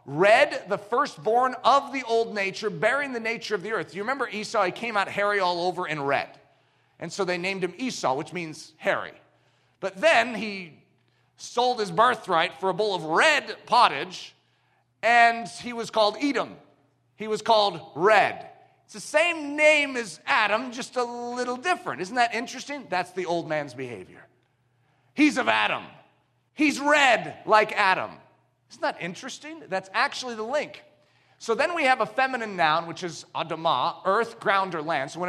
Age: 40-59